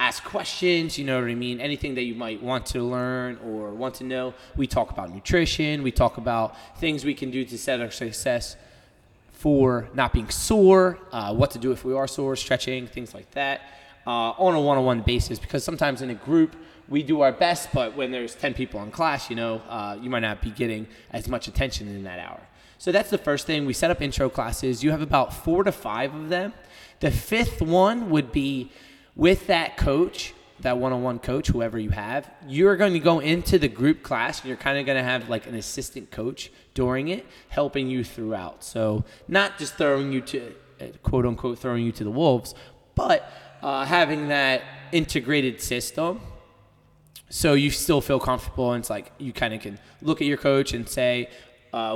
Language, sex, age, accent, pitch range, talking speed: English, male, 20-39, American, 115-145 Hz, 205 wpm